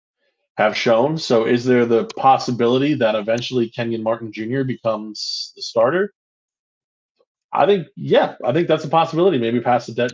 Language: English